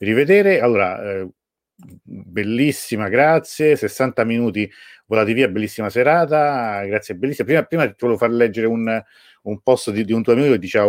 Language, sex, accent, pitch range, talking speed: Italian, male, native, 100-130 Hz, 160 wpm